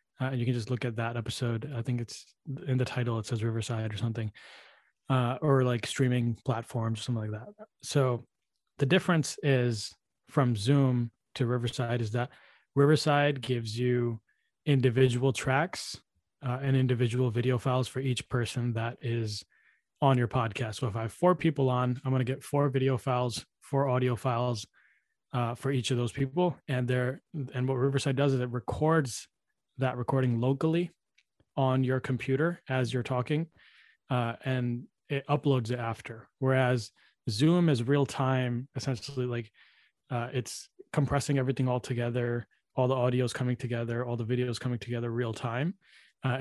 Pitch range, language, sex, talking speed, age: 120-135 Hz, English, male, 165 wpm, 20-39